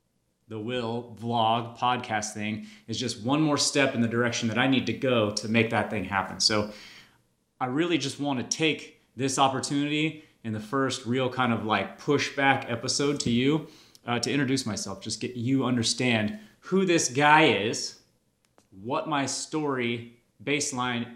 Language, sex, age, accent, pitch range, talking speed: English, male, 30-49, American, 110-135 Hz, 165 wpm